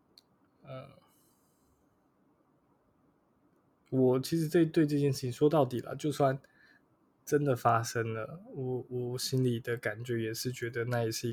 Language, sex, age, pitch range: Chinese, male, 20-39, 115-135 Hz